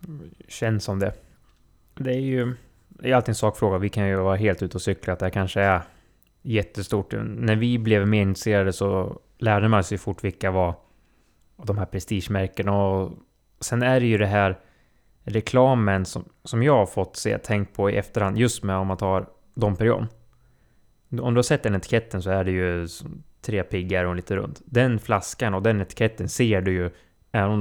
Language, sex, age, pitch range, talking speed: Swedish, male, 20-39, 95-110 Hz, 195 wpm